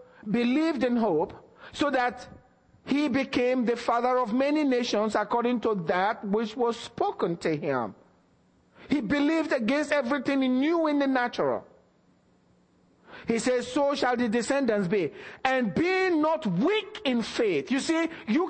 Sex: male